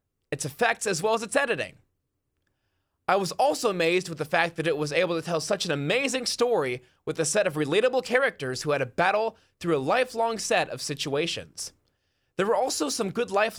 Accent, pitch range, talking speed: American, 140-220 Hz, 205 wpm